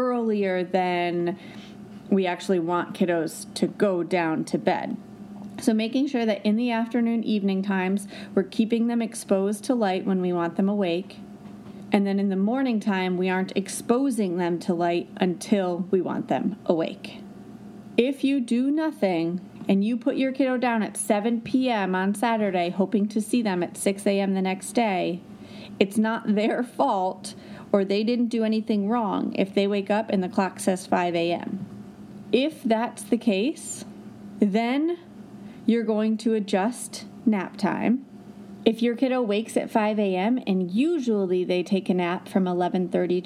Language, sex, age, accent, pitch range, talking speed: English, female, 30-49, American, 190-230 Hz, 165 wpm